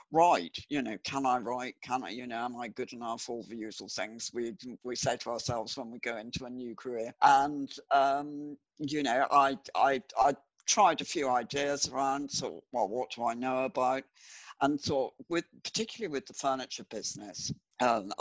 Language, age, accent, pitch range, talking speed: English, 60-79, British, 115-140 Hz, 190 wpm